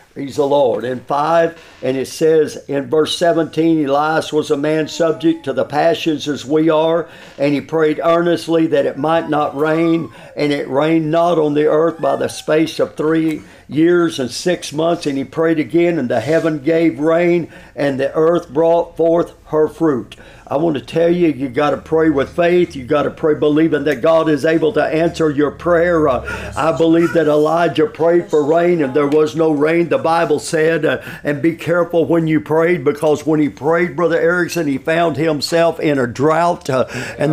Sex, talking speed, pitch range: male, 200 wpm, 150-170 Hz